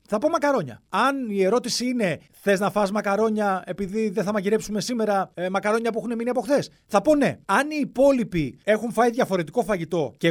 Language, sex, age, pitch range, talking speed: Greek, male, 30-49, 170-260 Hz, 200 wpm